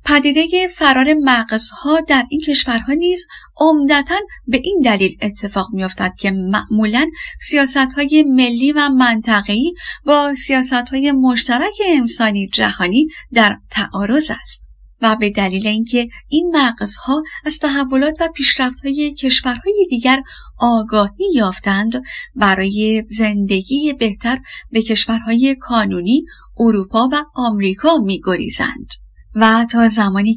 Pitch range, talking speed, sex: 215-280 Hz, 105 wpm, female